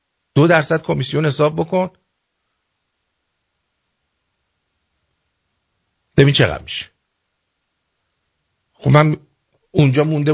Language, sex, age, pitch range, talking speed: English, male, 50-69, 120-185 Hz, 75 wpm